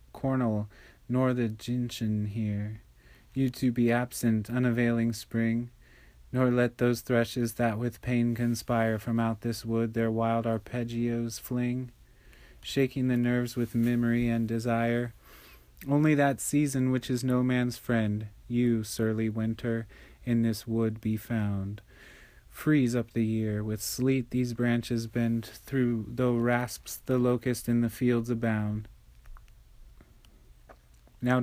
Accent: American